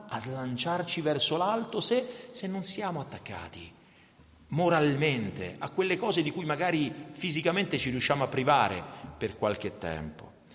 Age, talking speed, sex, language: 40-59, 135 wpm, male, Italian